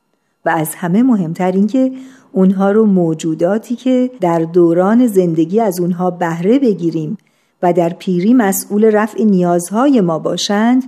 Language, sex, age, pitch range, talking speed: Persian, female, 50-69, 175-225 Hz, 140 wpm